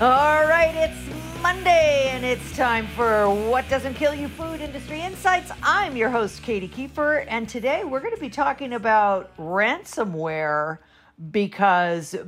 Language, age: English, 50-69